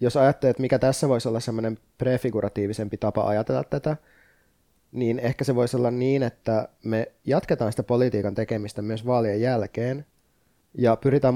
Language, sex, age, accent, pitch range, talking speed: Finnish, male, 20-39, native, 110-125 Hz, 150 wpm